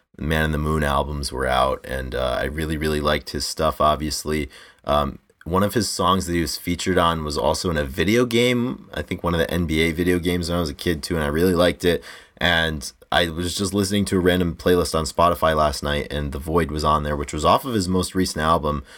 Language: English